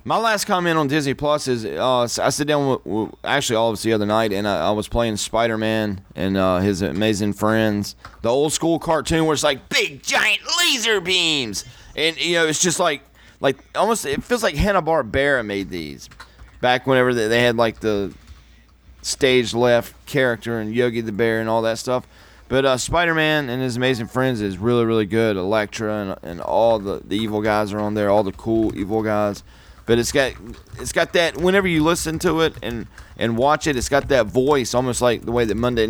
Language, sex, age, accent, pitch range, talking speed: English, male, 30-49, American, 105-135 Hz, 205 wpm